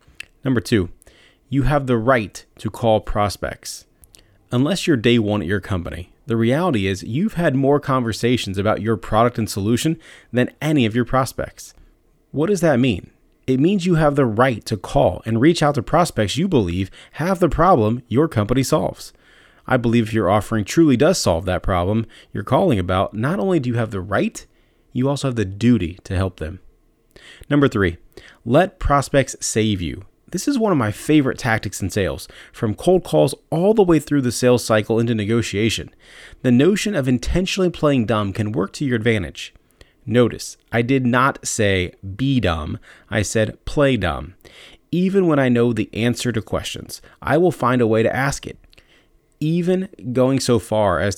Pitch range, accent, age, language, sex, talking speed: 105-145 Hz, American, 30-49, English, male, 185 wpm